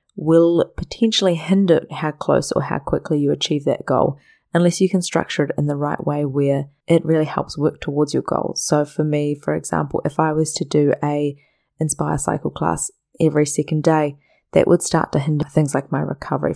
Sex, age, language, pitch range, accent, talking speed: female, 20-39, English, 145-165 Hz, Australian, 200 wpm